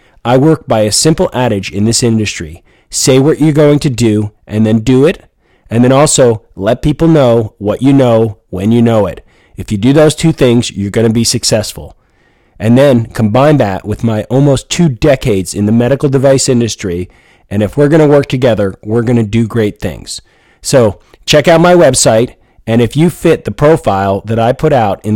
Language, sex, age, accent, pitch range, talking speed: English, male, 40-59, American, 105-140 Hz, 205 wpm